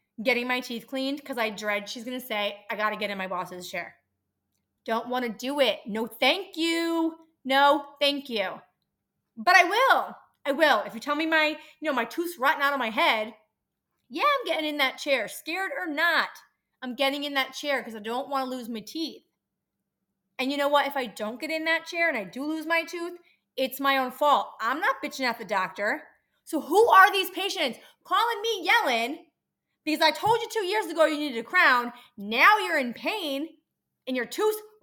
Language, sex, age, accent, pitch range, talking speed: English, female, 30-49, American, 225-315 Hz, 215 wpm